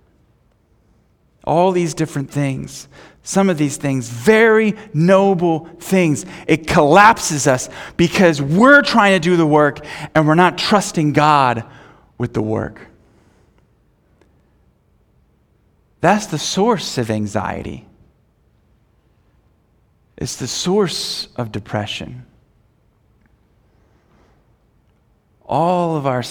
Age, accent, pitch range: 40-59, American, 115-160 Hz